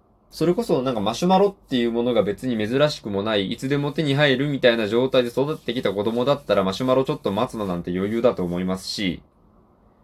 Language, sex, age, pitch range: Japanese, male, 20-39, 120-190 Hz